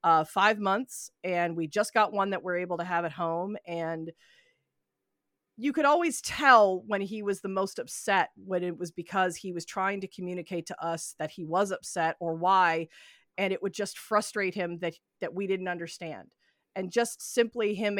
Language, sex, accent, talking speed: English, female, American, 195 wpm